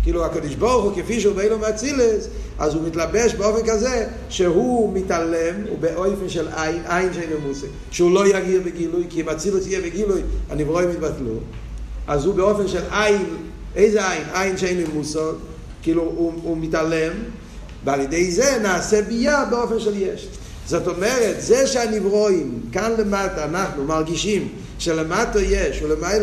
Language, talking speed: Hebrew, 155 wpm